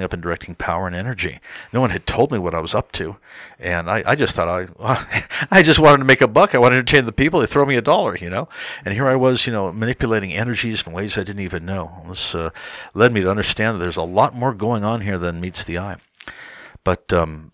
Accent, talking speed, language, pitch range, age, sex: American, 265 wpm, English, 90-120 Hz, 60-79, male